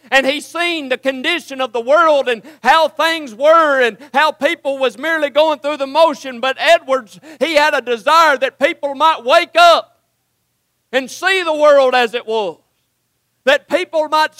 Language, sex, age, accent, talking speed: English, male, 50-69, American, 175 wpm